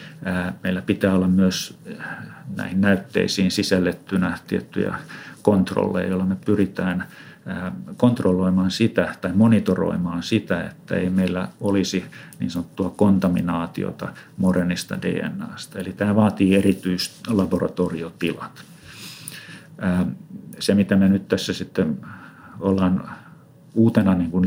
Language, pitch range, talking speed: Finnish, 90-100 Hz, 100 wpm